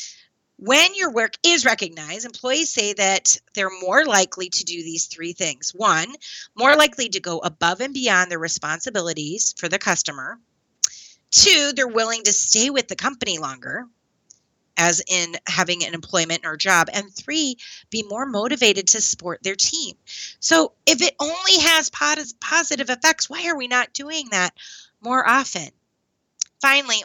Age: 30-49